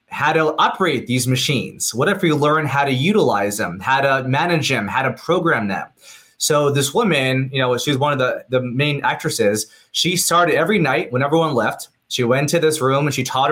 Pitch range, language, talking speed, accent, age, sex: 130-165 Hz, English, 215 wpm, American, 20-39, male